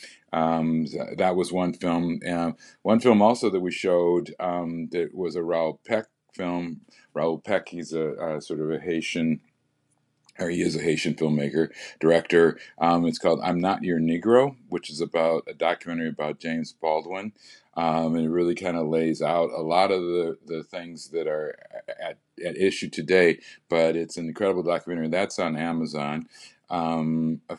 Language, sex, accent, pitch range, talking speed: English, male, American, 80-90 Hz, 175 wpm